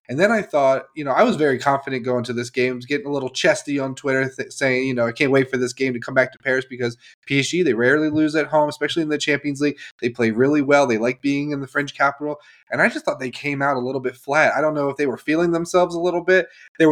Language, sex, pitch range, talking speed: English, male, 125-150 Hz, 290 wpm